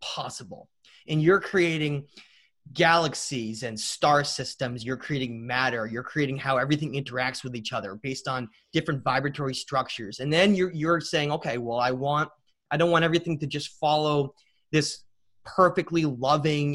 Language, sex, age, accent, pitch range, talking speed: English, male, 30-49, American, 130-170 Hz, 155 wpm